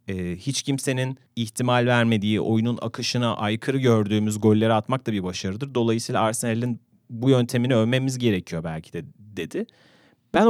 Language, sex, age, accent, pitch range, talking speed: Turkish, male, 40-59, native, 105-130 Hz, 130 wpm